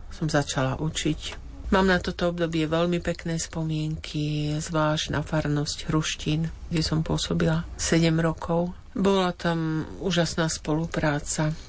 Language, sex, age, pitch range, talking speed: Slovak, female, 50-69, 145-170 Hz, 120 wpm